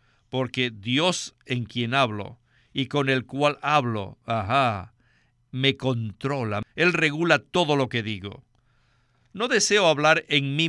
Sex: male